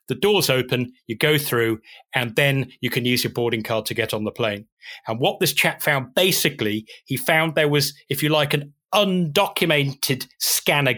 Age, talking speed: 30-49, 190 wpm